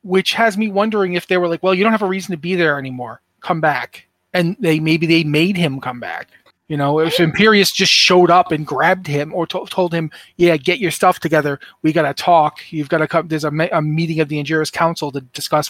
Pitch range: 155-200 Hz